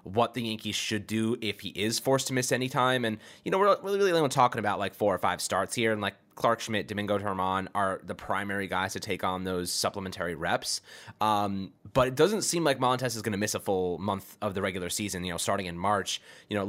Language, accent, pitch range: English, American, 100-120 Hz